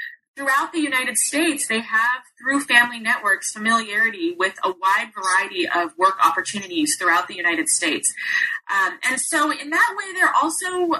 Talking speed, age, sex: 160 wpm, 20-39, female